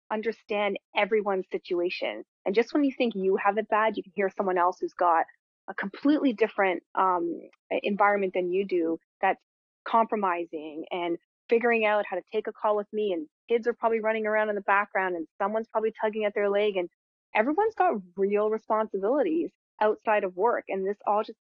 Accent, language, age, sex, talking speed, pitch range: American, English, 20-39, female, 190 wpm, 190-235 Hz